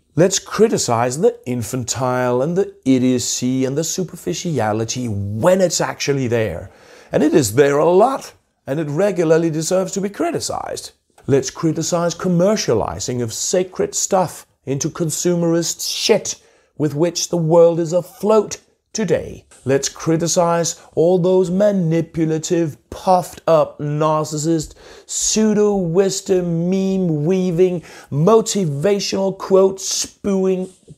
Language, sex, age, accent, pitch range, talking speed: English, male, 40-59, British, 125-185 Hz, 105 wpm